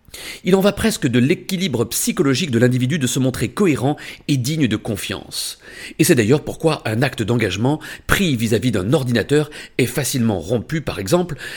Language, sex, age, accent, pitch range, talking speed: French, male, 40-59, French, 120-165 Hz, 170 wpm